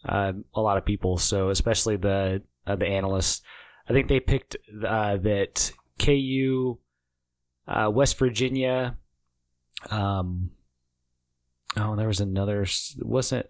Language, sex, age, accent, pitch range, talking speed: English, male, 20-39, American, 95-130 Hz, 120 wpm